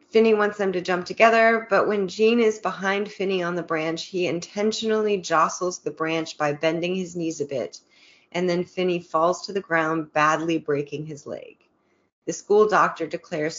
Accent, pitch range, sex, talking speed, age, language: American, 160-205 Hz, female, 180 wpm, 30-49, English